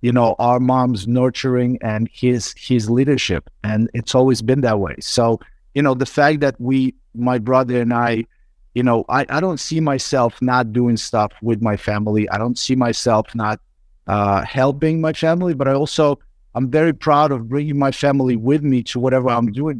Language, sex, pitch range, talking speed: English, male, 110-130 Hz, 195 wpm